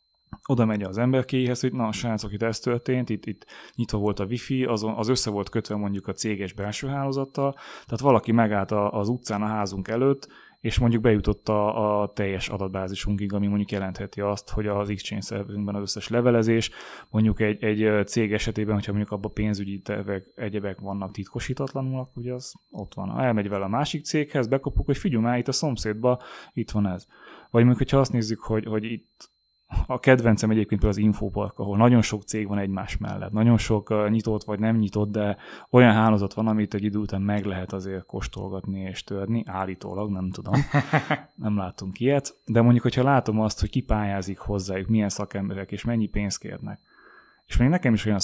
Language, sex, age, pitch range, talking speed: Hungarian, male, 20-39, 100-120 Hz, 190 wpm